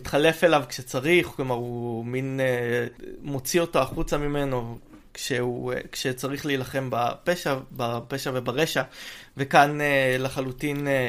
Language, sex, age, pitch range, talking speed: Hebrew, male, 20-39, 125-155 Hz, 95 wpm